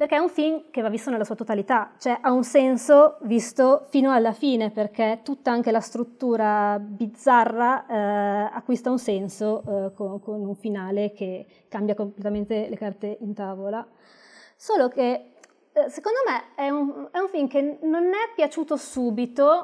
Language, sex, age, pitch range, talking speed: Italian, female, 20-39, 215-260 Hz, 165 wpm